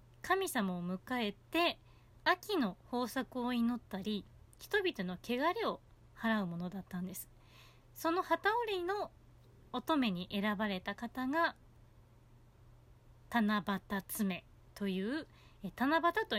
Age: 20-39